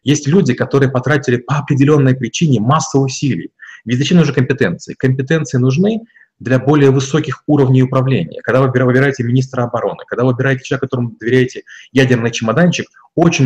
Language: Russian